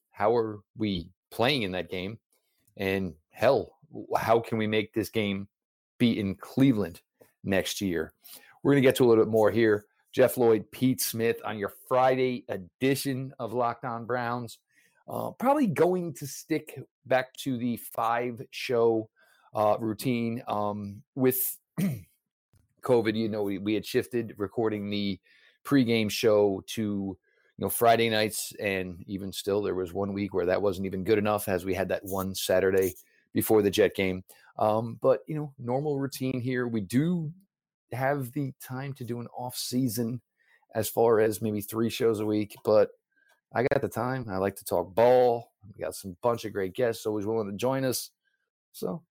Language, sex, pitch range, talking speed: English, male, 105-130 Hz, 175 wpm